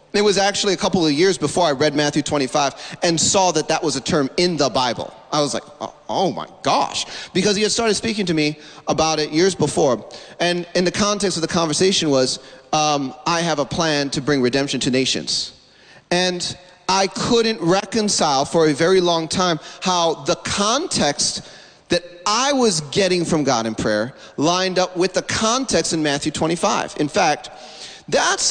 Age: 30-49